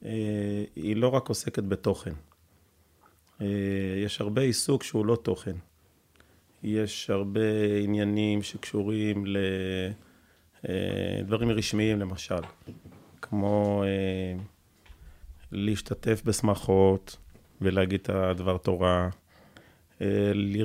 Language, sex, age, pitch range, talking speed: Hebrew, male, 30-49, 95-110 Hz, 85 wpm